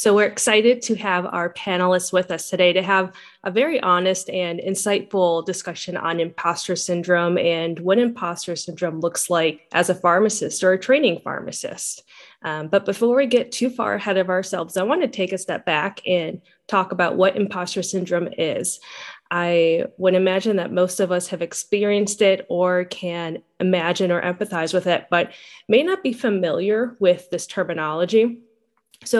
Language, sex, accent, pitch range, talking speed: English, female, American, 175-200 Hz, 175 wpm